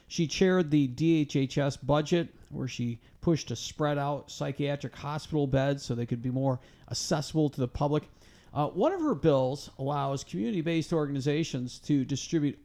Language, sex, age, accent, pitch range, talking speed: English, male, 50-69, American, 120-150 Hz, 155 wpm